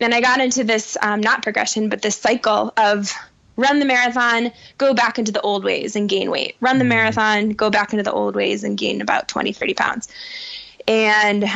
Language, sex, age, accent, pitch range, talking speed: English, female, 10-29, American, 205-240 Hz, 210 wpm